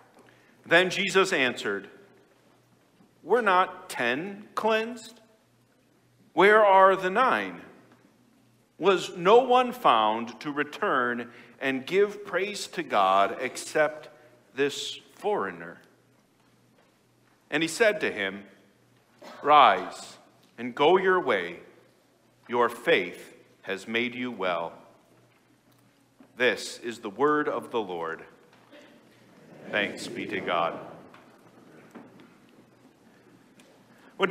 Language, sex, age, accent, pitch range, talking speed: English, male, 50-69, American, 125-205 Hz, 95 wpm